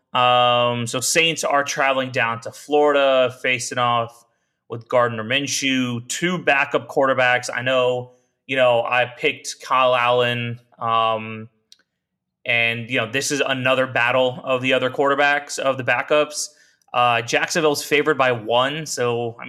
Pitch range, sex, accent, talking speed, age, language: 120-145 Hz, male, American, 145 wpm, 30-49, English